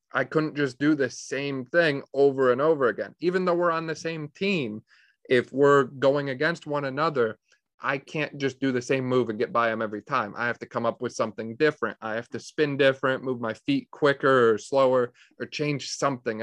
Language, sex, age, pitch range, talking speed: English, male, 30-49, 120-145 Hz, 215 wpm